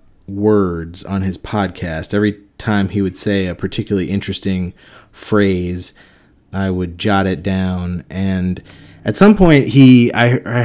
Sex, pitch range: male, 95-115 Hz